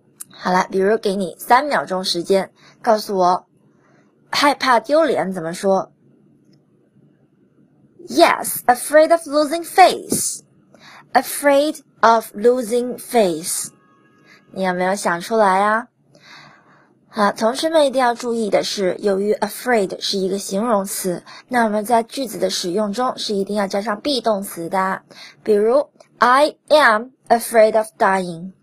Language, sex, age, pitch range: Chinese, female, 20-39, 190-255 Hz